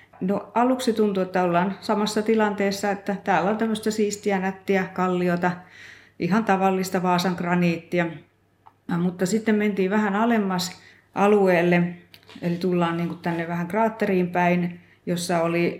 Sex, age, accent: female, 30-49, native